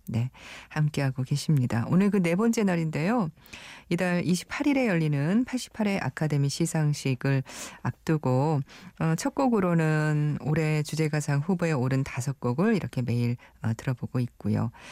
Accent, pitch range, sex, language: native, 125-190 Hz, female, Korean